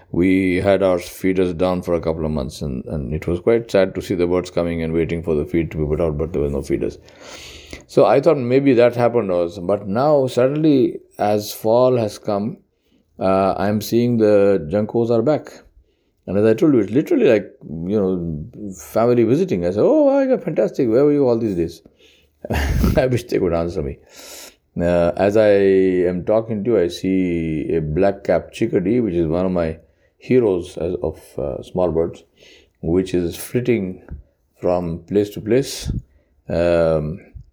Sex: male